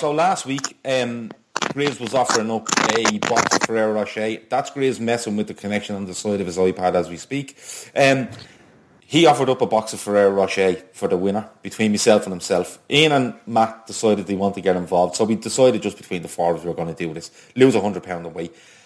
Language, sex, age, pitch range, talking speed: English, male, 30-49, 95-115 Hz, 225 wpm